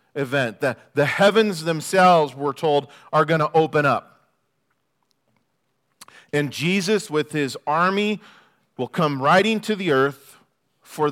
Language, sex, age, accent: English, male, 40-59, American